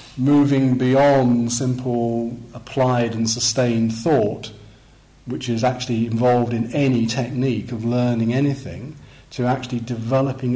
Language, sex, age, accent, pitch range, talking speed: English, male, 40-59, British, 115-130 Hz, 115 wpm